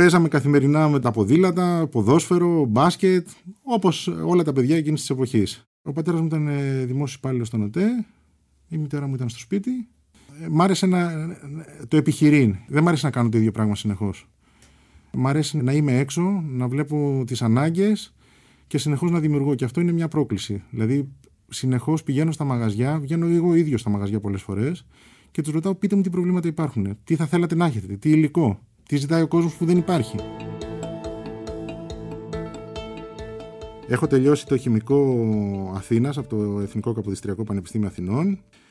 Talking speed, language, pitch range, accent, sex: 160 wpm, Greek, 110-160 Hz, native, male